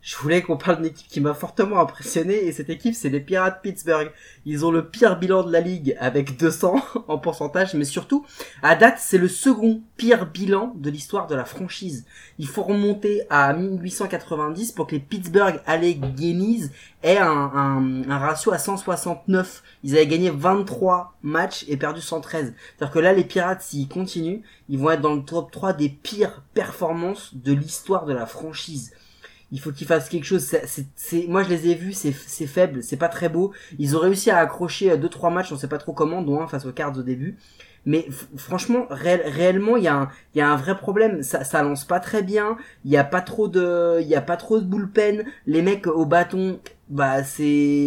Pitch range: 145-190 Hz